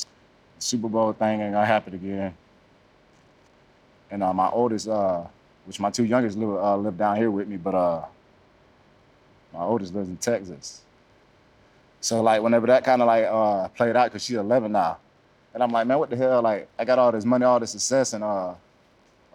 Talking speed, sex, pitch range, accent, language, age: 190 wpm, male, 105-125 Hz, American, English, 30-49